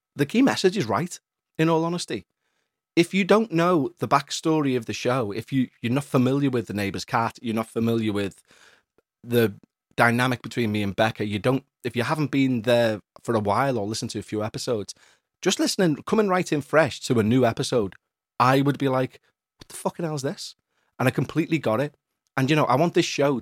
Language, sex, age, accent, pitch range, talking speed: English, male, 30-49, British, 110-145 Hz, 215 wpm